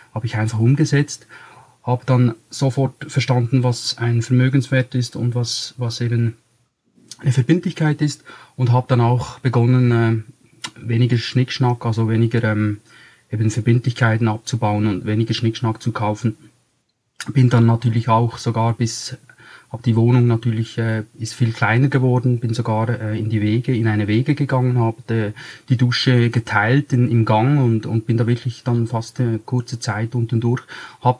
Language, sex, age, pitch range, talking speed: German, male, 30-49, 115-130 Hz, 155 wpm